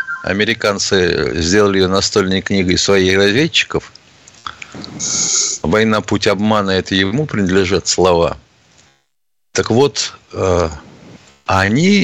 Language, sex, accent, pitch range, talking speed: Russian, male, native, 95-135 Hz, 90 wpm